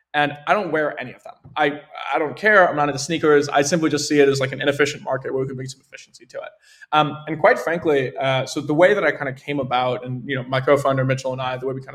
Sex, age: male, 20-39